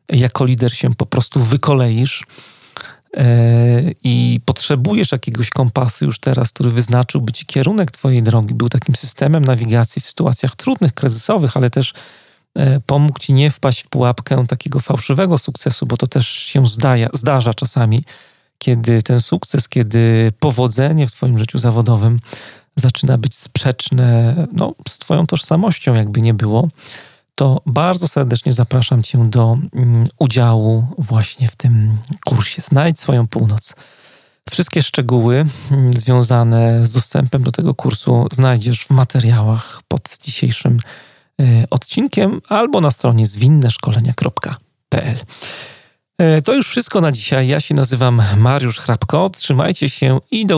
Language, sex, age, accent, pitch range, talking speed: Polish, male, 40-59, native, 120-145 Hz, 125 wpm